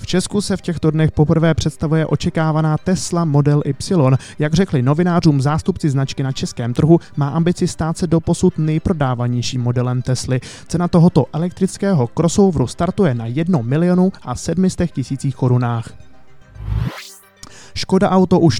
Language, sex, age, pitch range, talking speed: Czech, male, 20-39, 130-170 Hz, 130 wpm